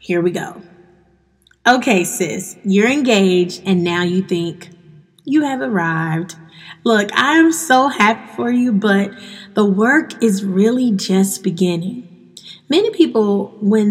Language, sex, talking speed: English, female, 135 wpm